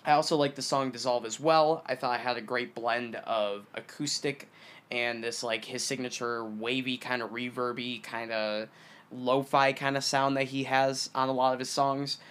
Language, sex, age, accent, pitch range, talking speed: English, male, 20-39, American, 120-140 Hz, 200 wpm